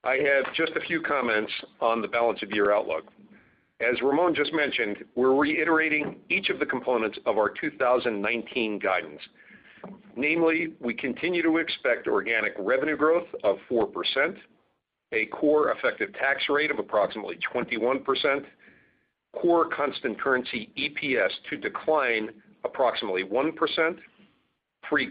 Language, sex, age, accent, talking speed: English, male, 50-69, American, 125 wpm